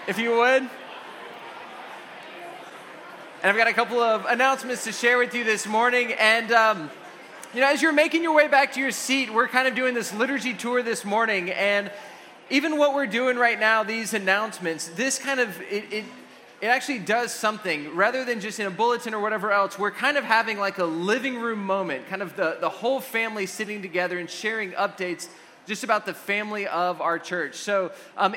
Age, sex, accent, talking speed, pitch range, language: 20-39, male, American, 200 wpm, 190-240 Hz, English